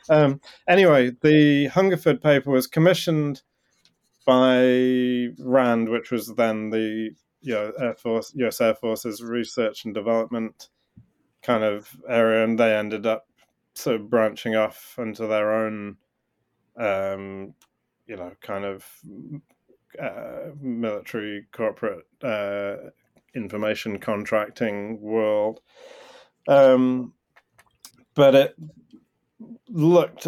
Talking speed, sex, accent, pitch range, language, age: 105 wpm, male, British, 110-140 Hz, English, 30-49